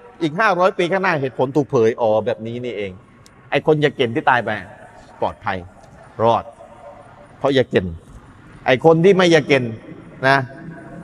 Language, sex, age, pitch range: Thai, male, 30-49, 130-180 Hz